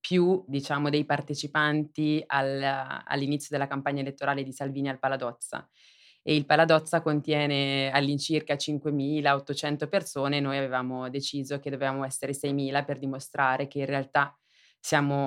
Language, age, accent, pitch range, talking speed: Italian, 20-39, native, 135-155 Hz, 125 wpm